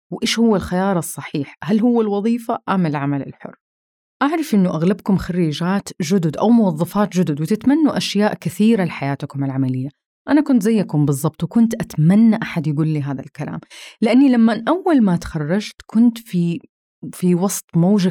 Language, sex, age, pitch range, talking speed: Arabic, female, 30-49, 165-225 Hz, 145 wpm